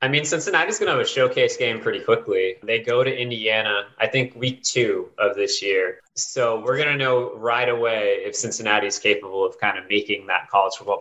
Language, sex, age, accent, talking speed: English, male, 20-39, American, 225 wpm